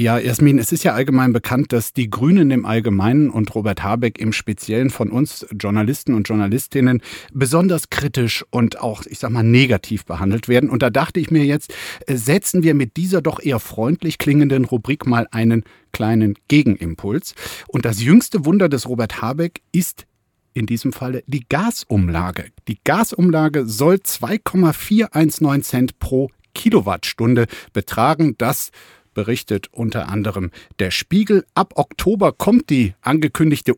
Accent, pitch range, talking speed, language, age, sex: German, 110-160 Hz, 145 wpm, German, 50-69, male